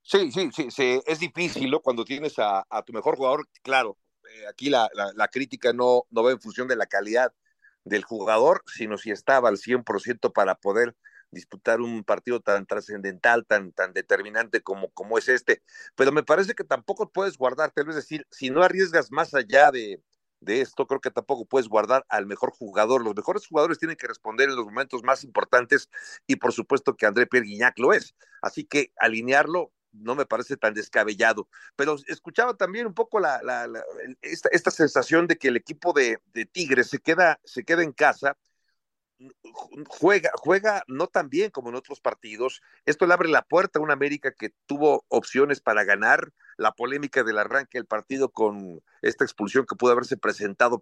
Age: 50-69